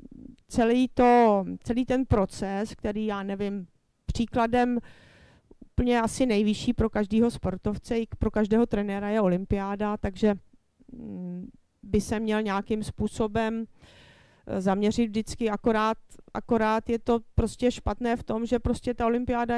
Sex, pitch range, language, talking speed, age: female, 205-235 Hz, Czech, 125 wpm, 30-49